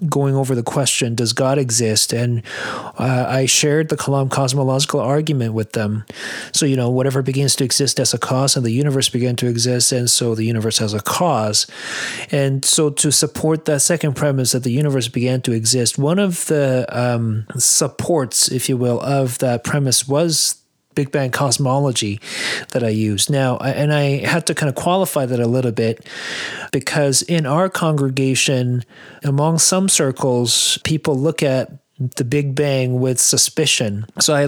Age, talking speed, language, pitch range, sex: 30-49, 175 wpm, English, 120-150 Hz, male